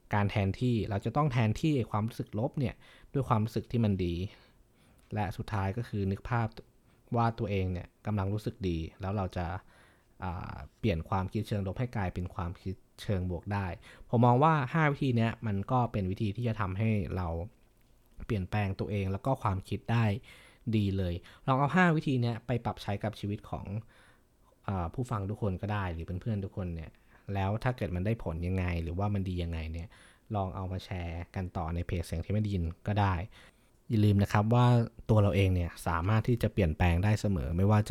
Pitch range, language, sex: 90-115 Hz, Thai, male